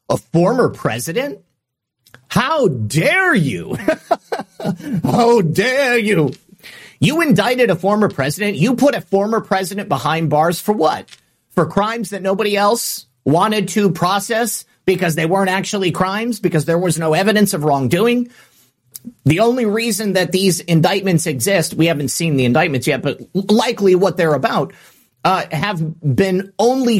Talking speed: 145 wpm